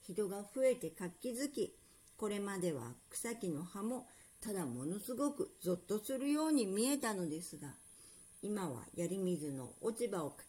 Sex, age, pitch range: female, 50-69, 175-255 Hz